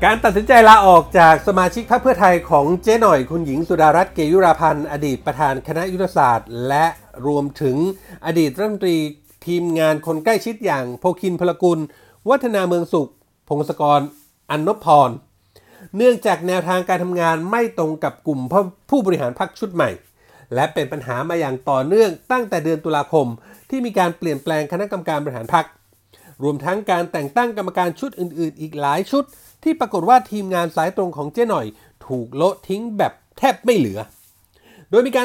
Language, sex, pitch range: Thai, male, 155-200 Hz